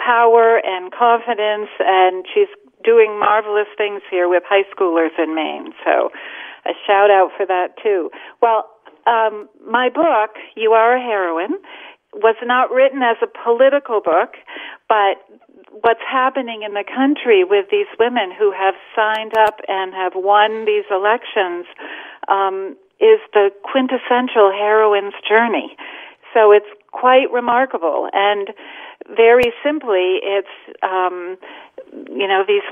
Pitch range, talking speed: 200-250 Hz, 130 wpm